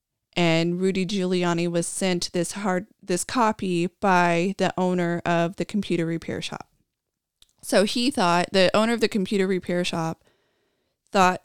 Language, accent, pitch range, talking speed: English, American, 175-190 Hz, 145 wpm